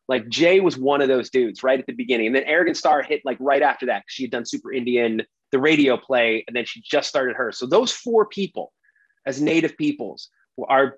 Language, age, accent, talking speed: English, 30-49, American, 235 wpm